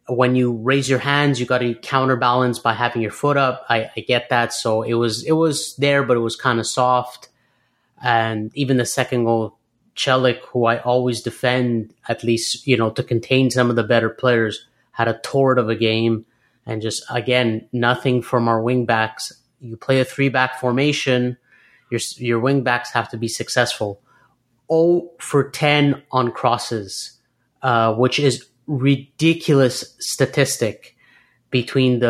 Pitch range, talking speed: 115-130 Hz, 170 wpm